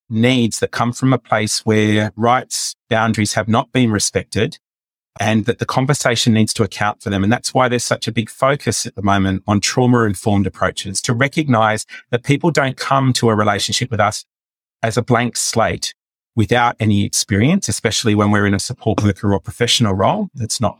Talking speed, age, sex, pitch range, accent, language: 190 wpm, 30-49, male, 105-120 Hz, Australian, English